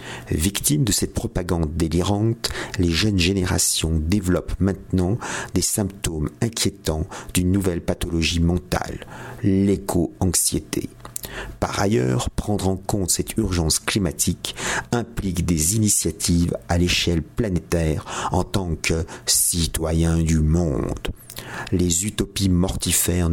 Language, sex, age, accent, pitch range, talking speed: French, male, 50-69, French, 85-100 Hz, 105 wpm